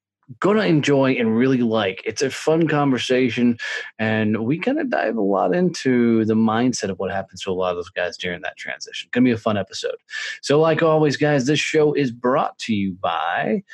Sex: male